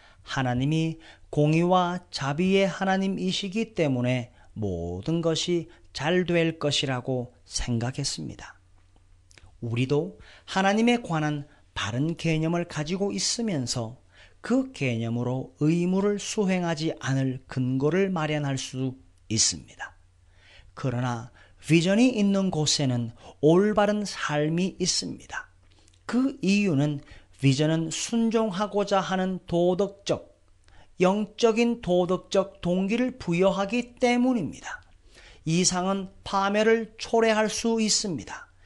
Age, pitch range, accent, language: 40-59, 125-200 Hz, native, Korean